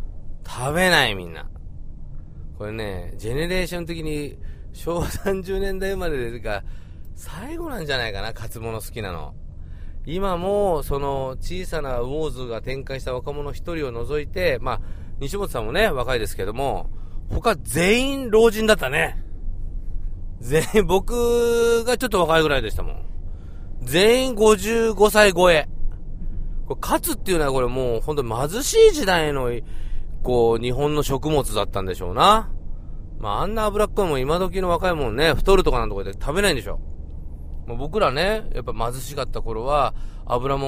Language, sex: Japanese, male